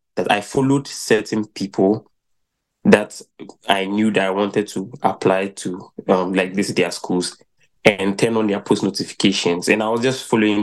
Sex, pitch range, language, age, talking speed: male, 95-110 Hz, English, 20-39, 170 wpm